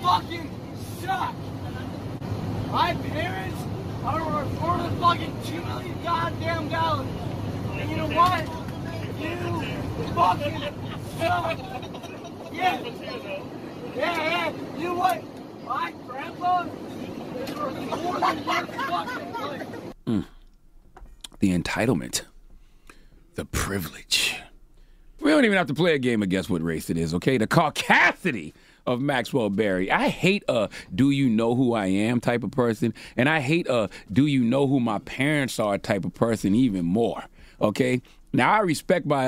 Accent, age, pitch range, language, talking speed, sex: American, 30-49, 120-180 Hz, English, 135 wpm, male